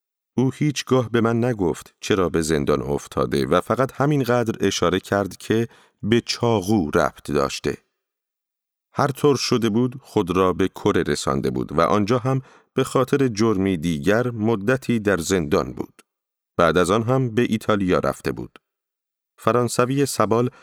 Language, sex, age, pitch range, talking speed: Persian, male, 40-59, 95-125 Hz, 145 wpm